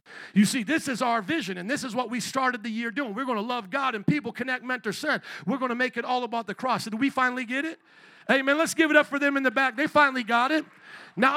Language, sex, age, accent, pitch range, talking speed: English, male, 50-69, American, 195-260 Hz, 295 wpm